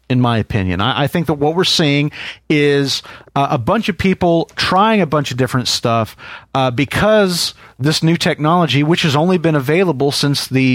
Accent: American